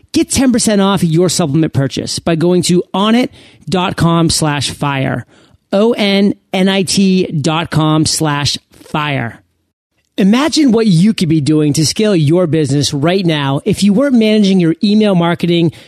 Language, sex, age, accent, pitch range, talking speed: English, male, 40-59, American, 160-215 Hz, 135 wpm